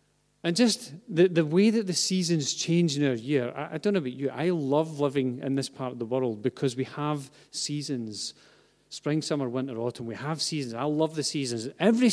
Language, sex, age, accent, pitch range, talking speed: English, male, 40-59, British, 130-165 Hz, 215 wpm